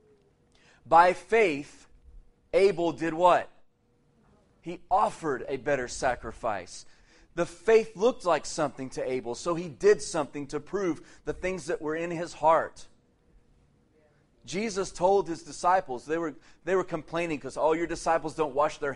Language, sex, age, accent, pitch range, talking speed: English, male, 30-49, American, 130-170 Hz, 140 wpm